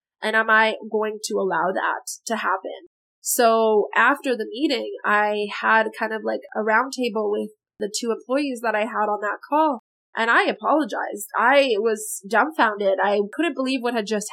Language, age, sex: English, 20-39, female